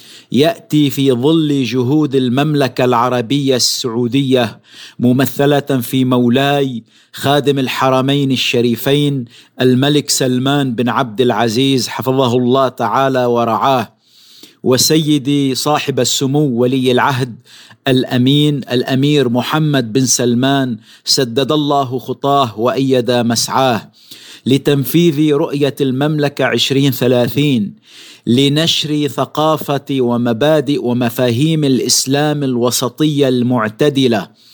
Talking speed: 85 wpm